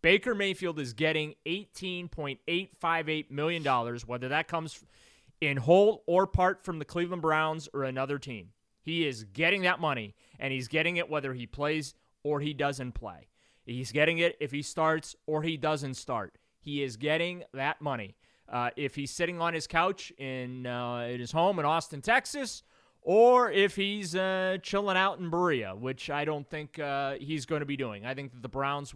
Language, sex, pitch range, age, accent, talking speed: English, male, 130-160 Hz, 30-49, American, 185 wpm